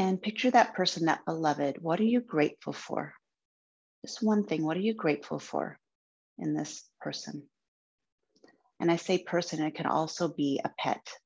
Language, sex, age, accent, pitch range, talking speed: English, female, 30-49, American, 145-175 Hz, 175 wpm